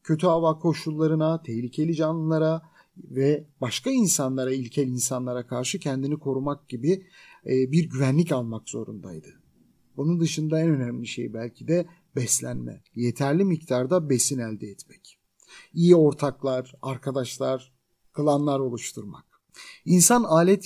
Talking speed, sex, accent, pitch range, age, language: 110 wpm, male, native, 125-165 Hz, 50-69, Turkish